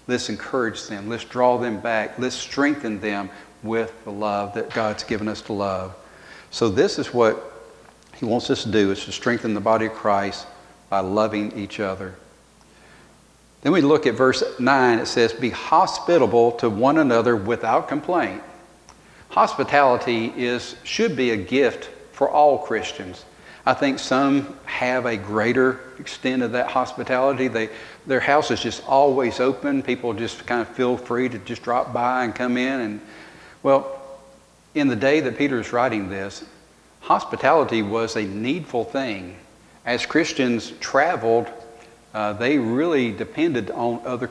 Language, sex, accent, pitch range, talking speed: English, male, American, 110-130 Hz, 160 wpm